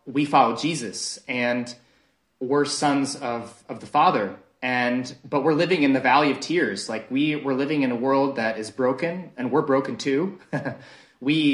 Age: 30-49